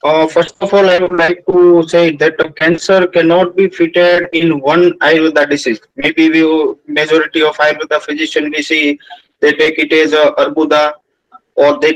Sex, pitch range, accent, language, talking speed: male, 155-180 Hz, Indian, English, 175 wpm